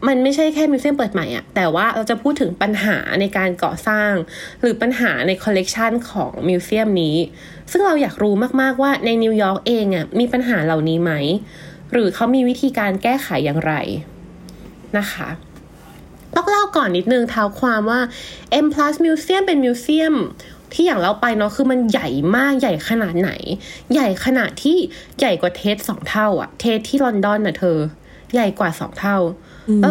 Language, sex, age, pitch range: Thai, female, 20-39, 185-265 Hz